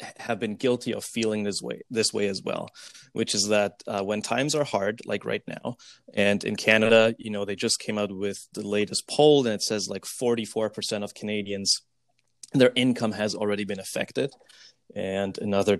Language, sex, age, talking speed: English, male, 20-39, 195 wpm